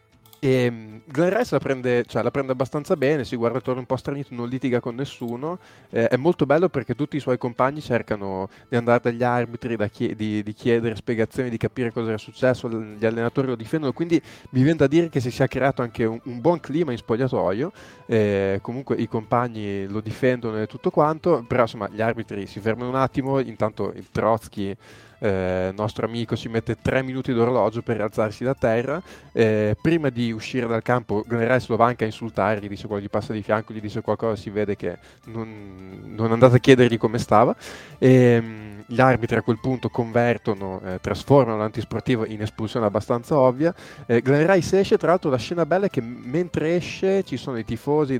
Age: 20-39